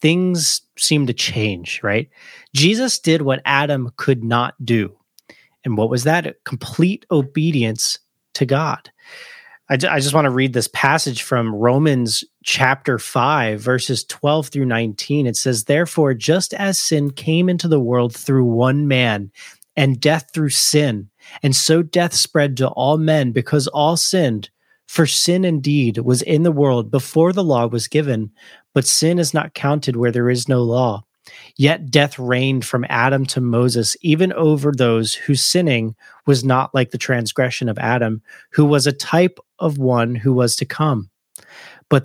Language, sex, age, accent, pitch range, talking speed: English, male, 30-49, American, 125-155 Hz, 165 wpm